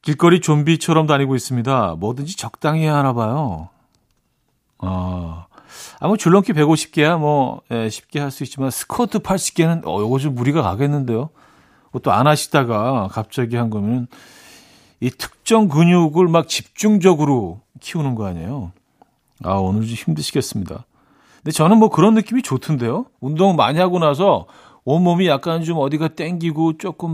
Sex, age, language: male, 40-59, Korean